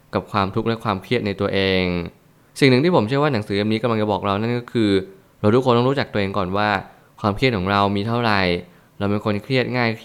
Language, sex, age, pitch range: Thai, male, 20-39, 100-125 Hz